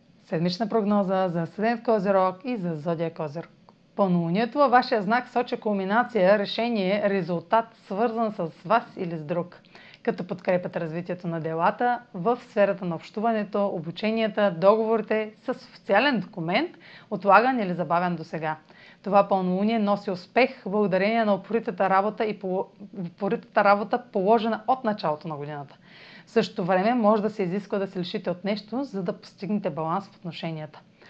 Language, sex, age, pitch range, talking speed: Bulgarian, female, 30-49, 185-240 Hz, 145 wpm